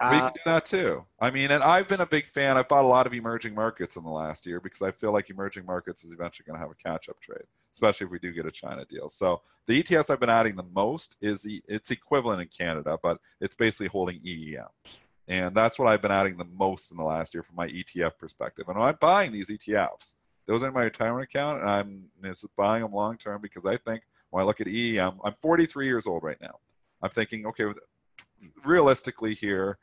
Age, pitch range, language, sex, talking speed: 40-59, 90-115 Hz, English, male, 235 wpm